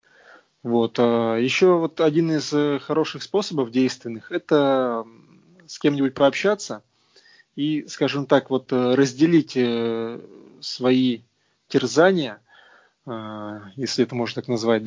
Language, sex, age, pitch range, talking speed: Russian, male, 20-39, 120-165 Hz, 95 wpm